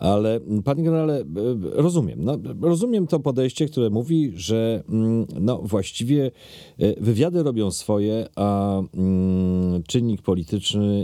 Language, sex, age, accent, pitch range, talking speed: Polish, male, 40-59, native, 85-115 Hz, 110 wpm